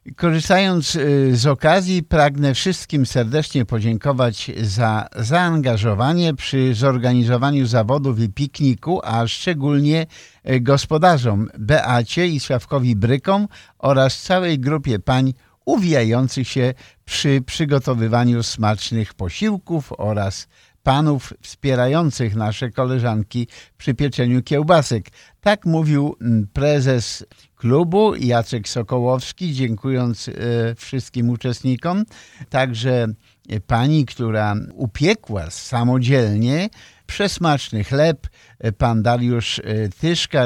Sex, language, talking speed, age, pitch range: male, Polish, 85 wpm, 50-69, 115-140 Hz